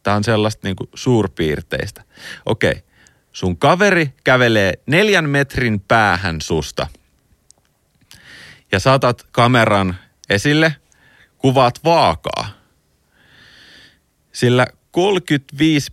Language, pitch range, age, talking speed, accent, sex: Finnish, 95-130 Hz, 30-49, 85 wpm, native, male